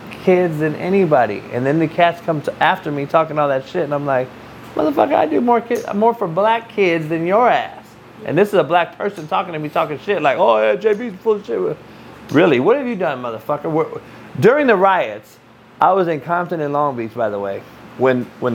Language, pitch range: English, 130-195 Hz